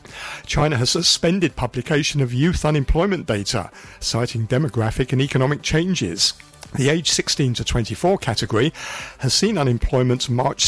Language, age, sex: English, 50-69, male